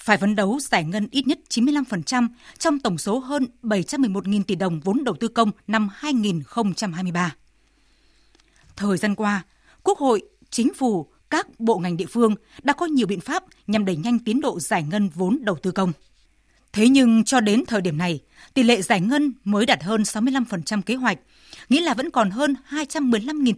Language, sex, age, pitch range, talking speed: Vietnamese, female, 20-39, 195-255 Hz, 185 wpm